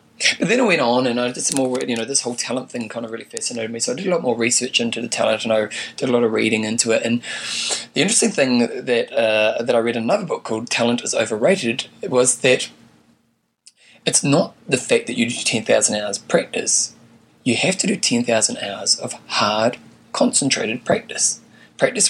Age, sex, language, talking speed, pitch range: 20-39, male, English, 215 wpm, 115-170 Hz